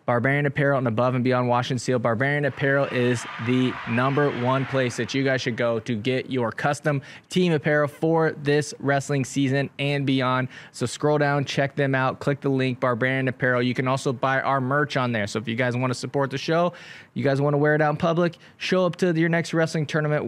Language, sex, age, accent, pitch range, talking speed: English, male, 20-39, American, 125-145 Hz, 225 wpm